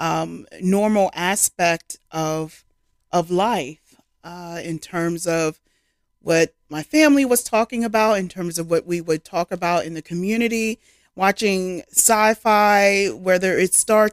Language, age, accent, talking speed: English, 30-49, American, 135 wpm